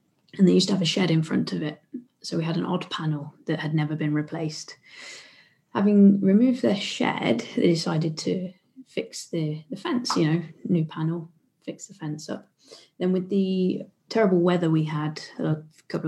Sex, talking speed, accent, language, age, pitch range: female, 185 wpm, British, English, 20-39, 160-205 Hz